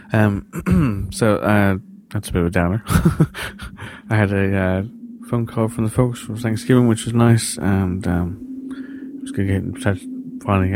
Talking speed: 175 wpm